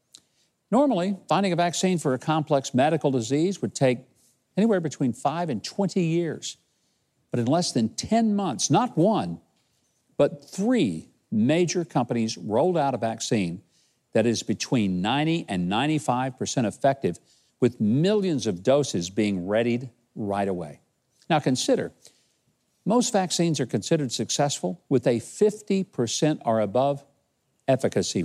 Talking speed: 130 wpm